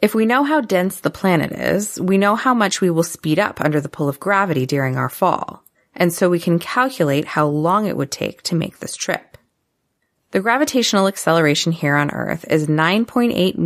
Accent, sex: American, female